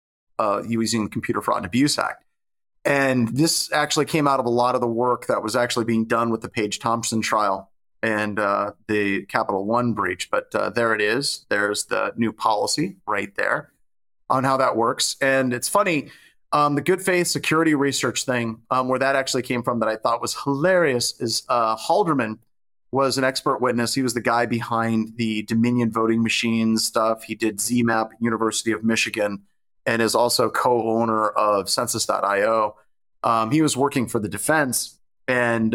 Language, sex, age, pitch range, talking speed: English, male, 30-49, 110-135 Hz, 180 wpm